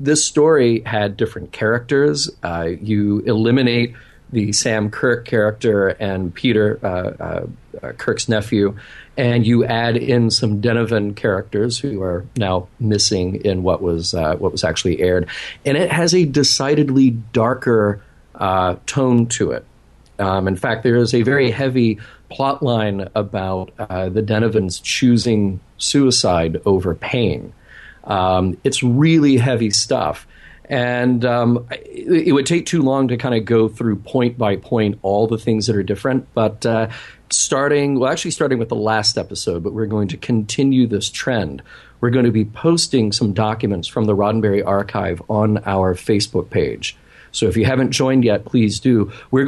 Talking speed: 160 wpm